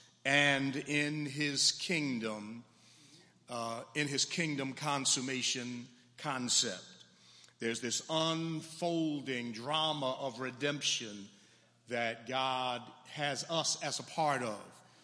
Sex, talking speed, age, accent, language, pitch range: male, 95 wpm, 50-69, American, English, 125-155 Hz